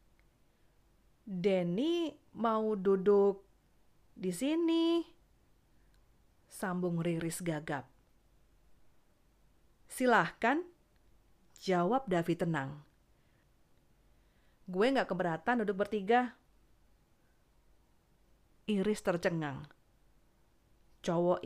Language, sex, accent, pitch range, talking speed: Indonesian, female, native, 170-220 Hz, 55 wpm